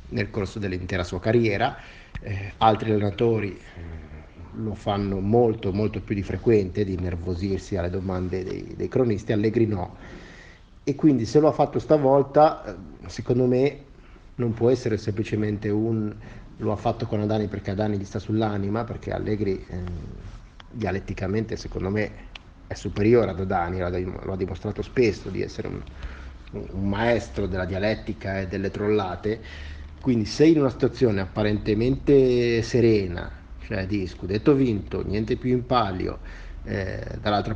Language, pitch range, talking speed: Italian, 95-115 Hz, 145 wpm